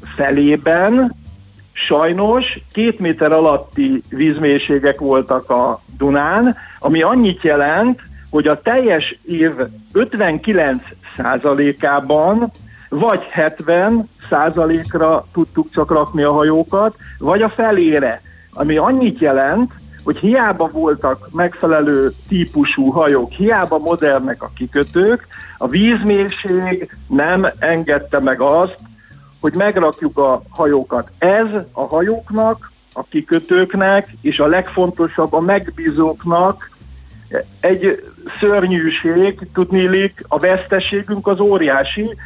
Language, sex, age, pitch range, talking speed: Hungarian, male, 50-69, 150-200 Hz, 95 wpm